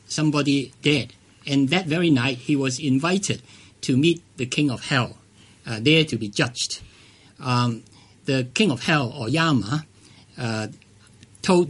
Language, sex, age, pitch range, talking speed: English, male, 50-69, 115-165 Hz, 150 wpm